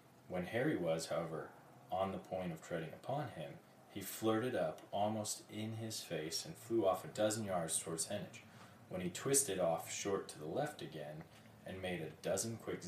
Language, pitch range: English, 90-115 Hz